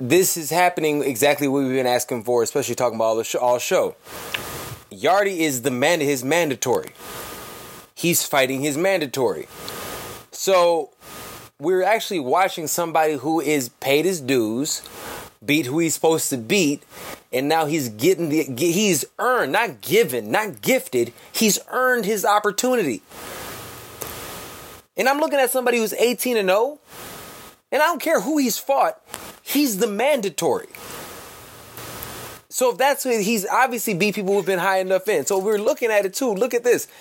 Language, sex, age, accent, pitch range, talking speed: English, male, 20-39, American, 155-235 Hz, 155 wpm